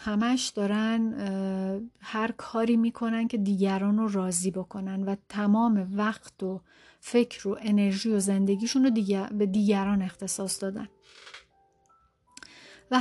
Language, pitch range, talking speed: Persian, 195-230 Hz, 120 wpm